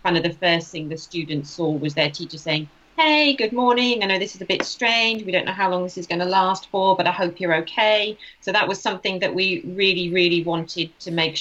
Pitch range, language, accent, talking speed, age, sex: 165-185 Hz, English, British, 260 wpm, 40-59, female